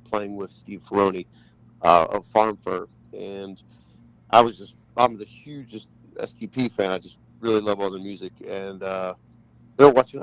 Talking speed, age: 170 wpm, 40-59